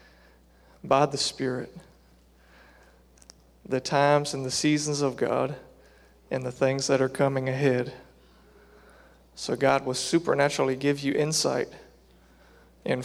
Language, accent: English, American